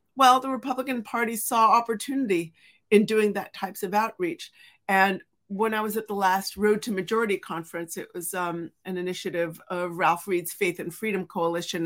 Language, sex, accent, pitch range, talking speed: English, female, American, 175-215 Hz, 175 wpm